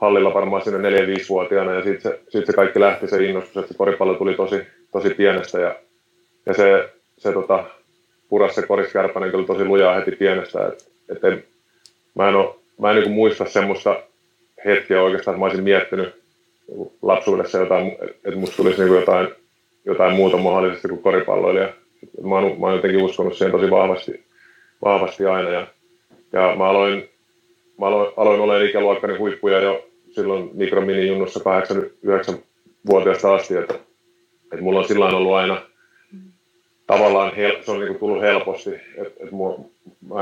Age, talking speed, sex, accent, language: 30-49, 150 wpm, male, native, Finnish